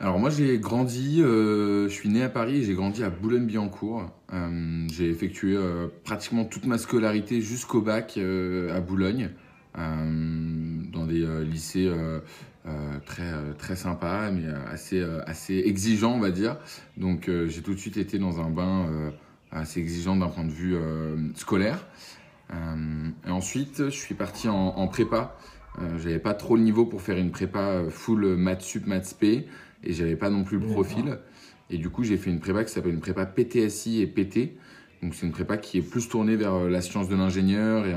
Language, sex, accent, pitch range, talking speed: French, male, French, 85-105 Hz, 200 wpm